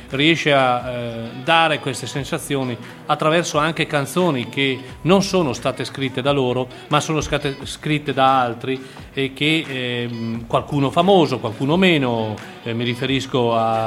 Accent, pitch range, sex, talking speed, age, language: native, 120-155 Hz, male, 130 wpm, 40-59, Italian